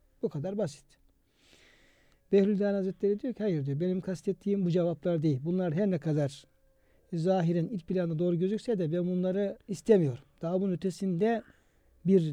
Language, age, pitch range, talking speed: Turkish, 60-79, 155-205 Hz, 150 wpm